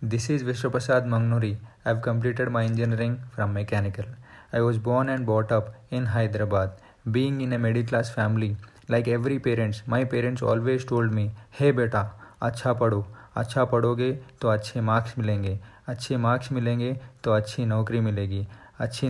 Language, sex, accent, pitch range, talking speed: Hindi, male, native, 110-125 Hz, 155 wpm